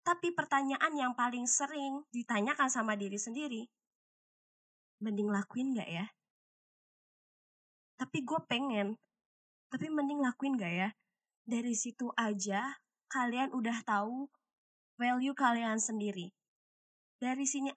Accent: native